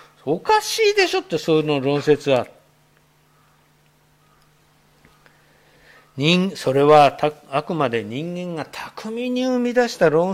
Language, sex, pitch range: Japanese, male, 180-260 Hz